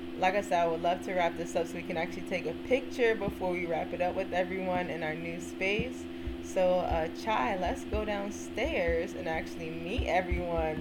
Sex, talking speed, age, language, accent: female, 210 wpm, 20-39, English, American